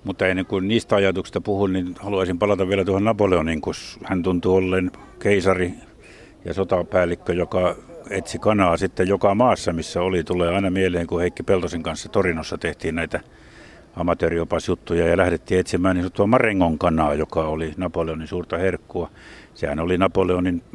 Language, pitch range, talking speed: Finnish, 90-105 Hz, 150 wpm